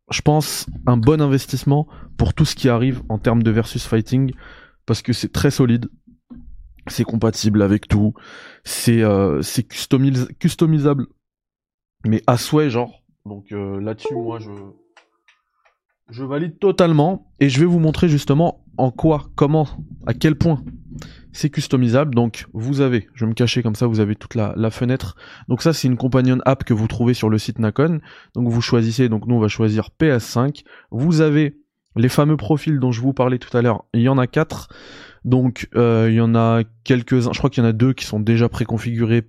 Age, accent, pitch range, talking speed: 20-39, French, 110-135 Hz, 190 wpm